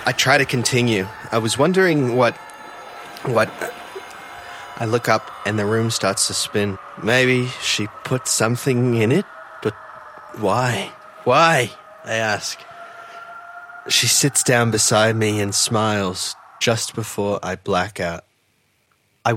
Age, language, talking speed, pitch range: 20-39, English, 135 wpm, 100-120 Hz